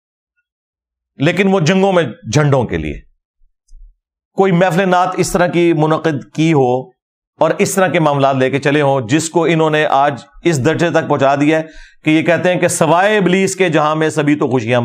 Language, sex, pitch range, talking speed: Urdu, male, 135-180 Hz, 195 wpm